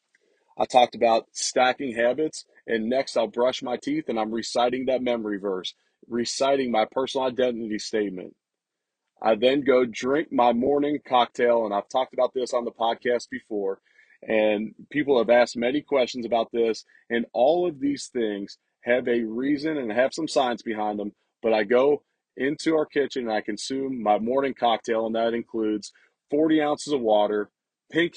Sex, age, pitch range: male, 30-49, 110-140 Hz